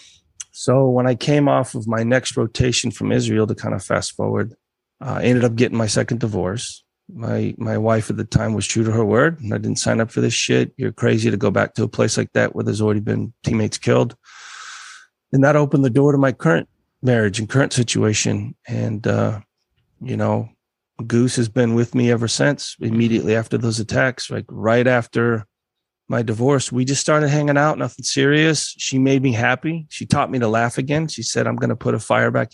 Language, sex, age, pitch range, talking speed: English, male, 30-49, 115-130 Hz, 215 wpm